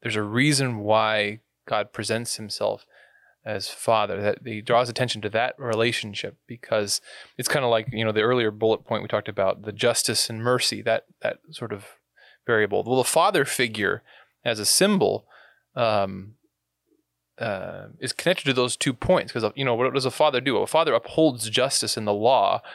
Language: English